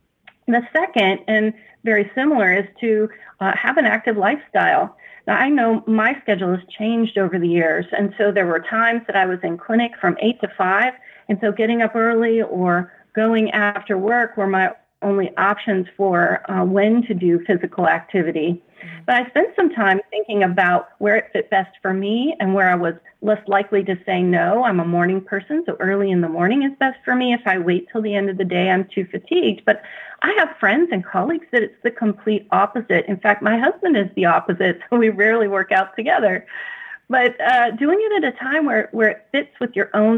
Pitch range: 185-225 Hz